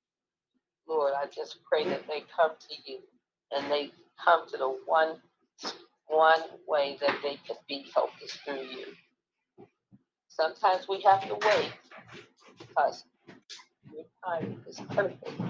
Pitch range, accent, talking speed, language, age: 155-215 Hz, American, 135 wpm, English, 50-69